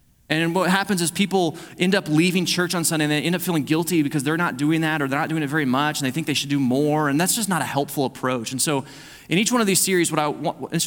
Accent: American